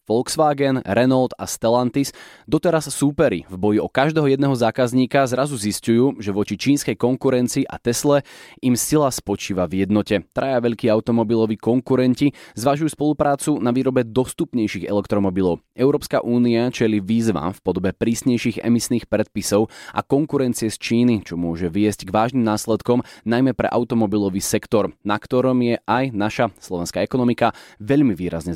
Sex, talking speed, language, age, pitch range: male, 140 wpm, Slovak, 20-39, 105-130 Hz